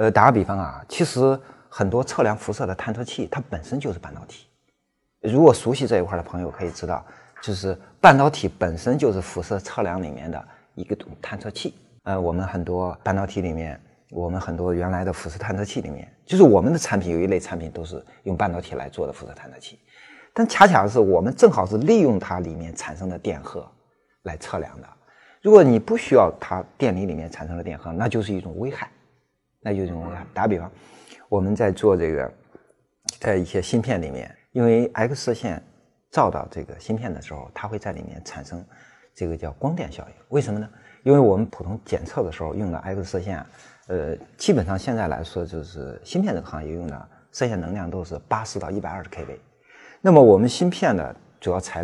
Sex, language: male, Chinese